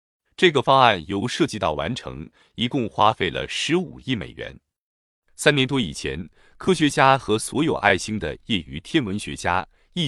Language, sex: Chinese, male